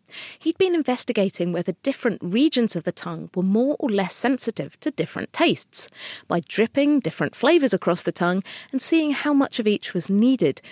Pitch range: 180-265 Hz